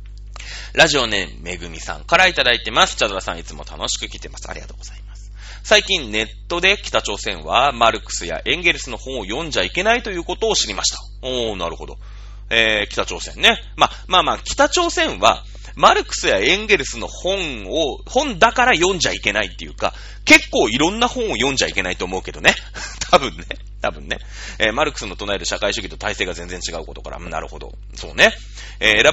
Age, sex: 30-49, male